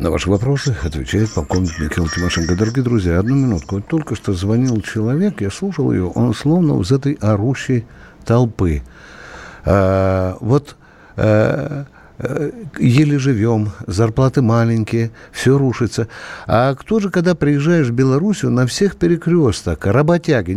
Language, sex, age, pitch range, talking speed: Russian, male, 60-79, 105-160 Hz, 135 wpm